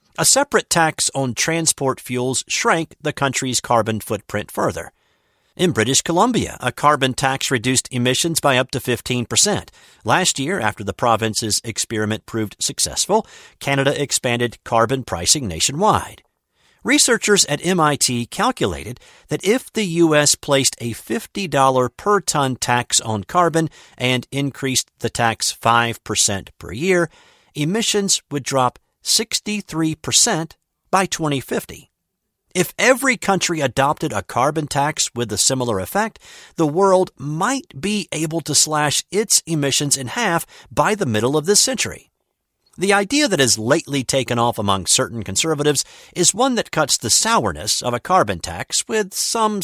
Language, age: English, 50-69